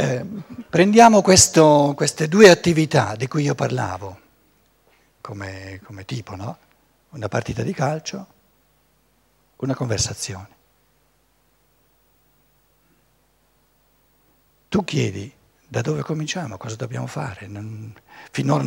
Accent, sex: native, male